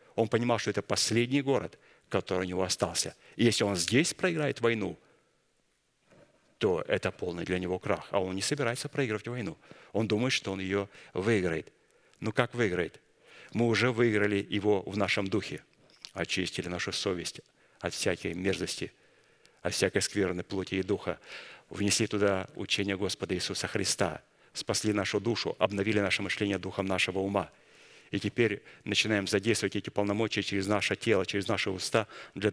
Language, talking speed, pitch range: Russian, 155 wpm, 95-110 Hz